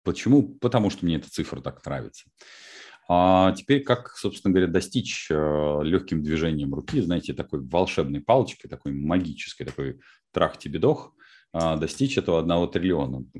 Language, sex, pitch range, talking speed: Russian, male, 80-100 Hz, 130 wpm